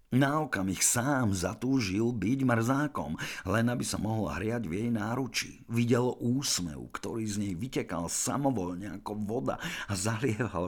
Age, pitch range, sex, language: 50-69, 85-115 Hz, male, Slovak